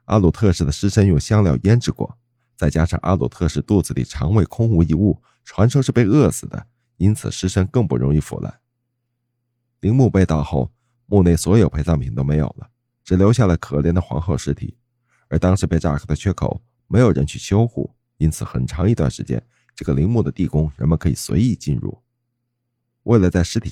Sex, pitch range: male, 80-120 Hz